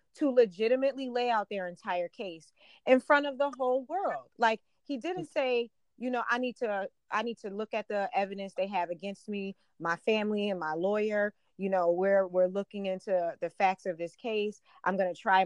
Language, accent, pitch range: English, American, 185-240 Hz